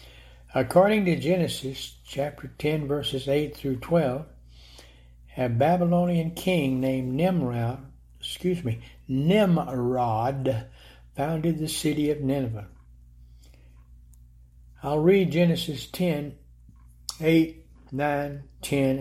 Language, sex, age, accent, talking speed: English, male, 60-79, American, 90 wpm